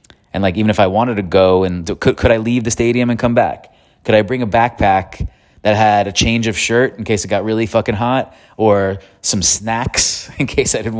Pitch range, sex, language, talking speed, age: 95-110 Hz, male, English, 240 wpm, 30-49